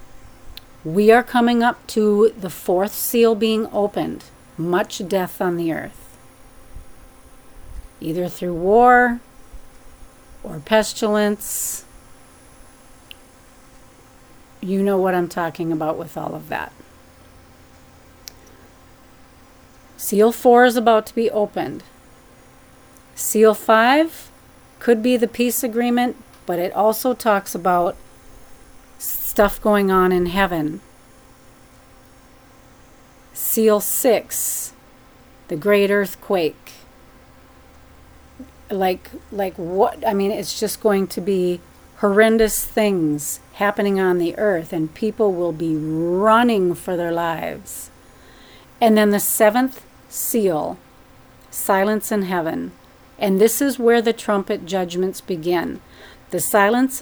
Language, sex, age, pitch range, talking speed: English, female, 40-59, 170-220 Hz, 105 wpm